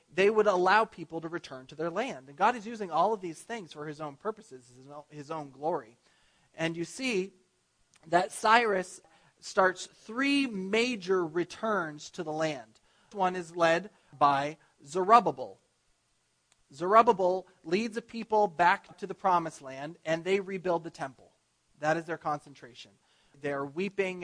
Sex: male